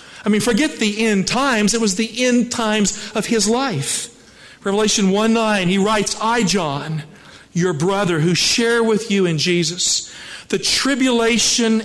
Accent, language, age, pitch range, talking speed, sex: American, English, 50-69, 155-205 Hz, 150 wpm, male